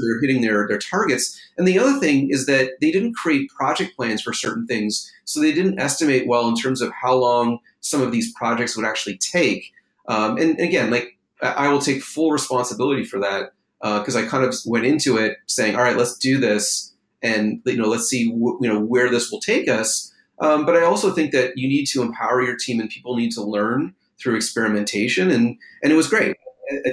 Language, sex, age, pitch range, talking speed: English, male, 30-49, 115-145 Hz, 225 wpm